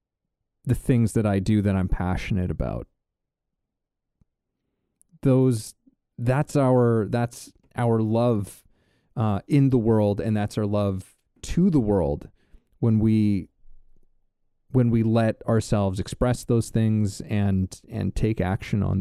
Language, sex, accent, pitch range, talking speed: English, male, American, 100-120 Hz, 125 wpm